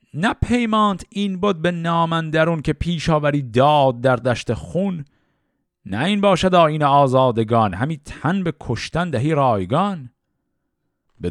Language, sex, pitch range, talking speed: Persian, male, 110-165 Hz, 135 wpm